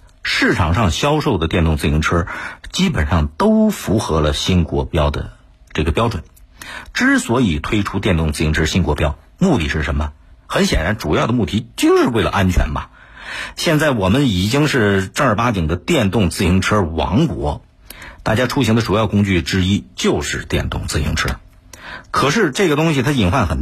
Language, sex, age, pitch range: Chinese, male, 50-69, 80-125 Hz